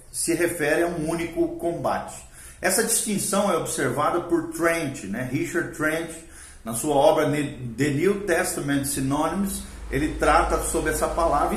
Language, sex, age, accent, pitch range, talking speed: Portuguese, male, 40-59, Brazilian, 135-190 Hz, 140 wpm